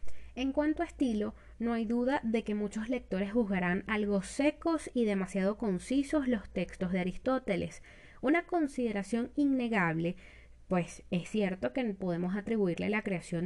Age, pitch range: 20-39, 185-250 Hz